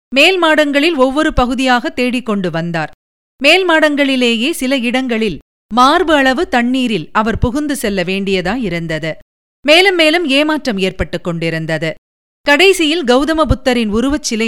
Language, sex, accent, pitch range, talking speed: Tamil, female, native, 195-290 Hz, 105 wpm